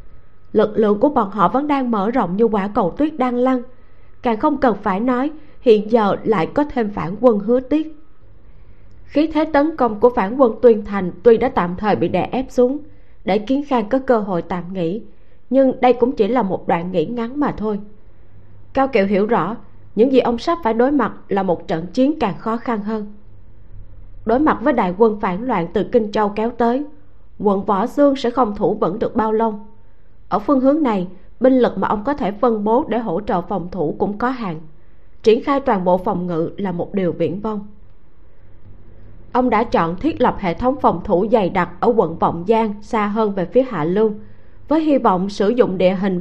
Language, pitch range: Vietnamese, 180-250 Hz